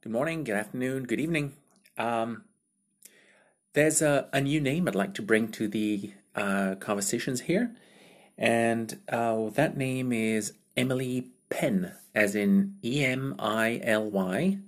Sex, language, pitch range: male, English, 105-140 Hz